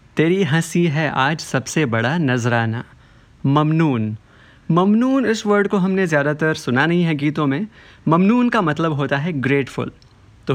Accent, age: native, 20-39